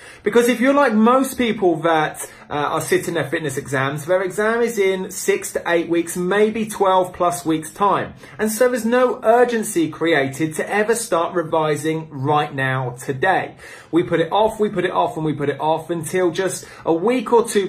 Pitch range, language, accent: 155-215 Hz, English, British